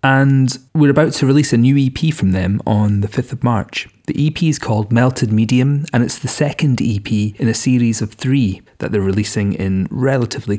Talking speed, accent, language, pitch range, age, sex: 205 wpm, British, English, 105-125 Hz, 30-49, male